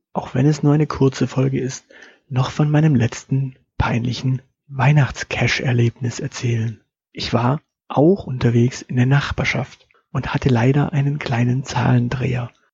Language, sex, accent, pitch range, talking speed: German, male, German, 120-145 Hz, 130 wpm